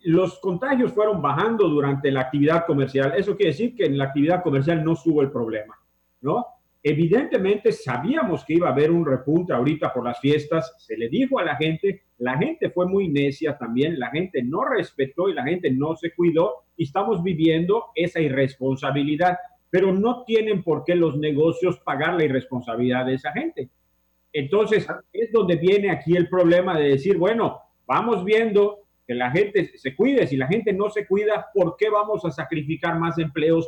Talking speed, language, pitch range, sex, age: 180 wpm, Spanish, 140-195 Hz, male, 50-69